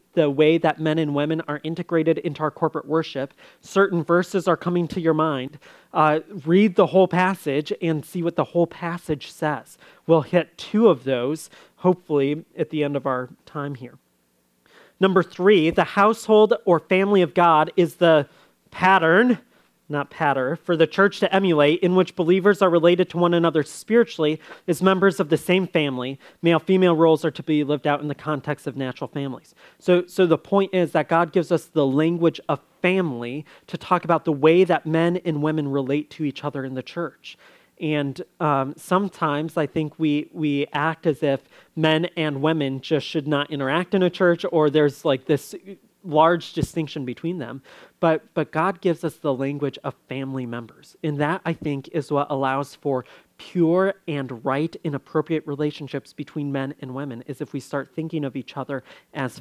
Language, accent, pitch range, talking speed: English, American, 145-175 Hz, 185 wpm